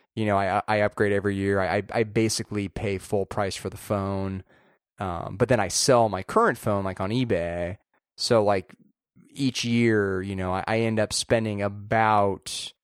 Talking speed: 180 wpm